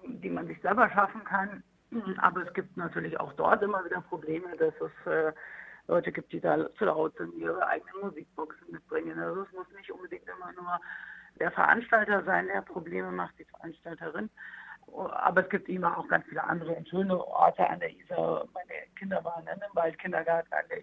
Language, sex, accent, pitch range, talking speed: German, female, German, 165-210 Hz, 185 wpm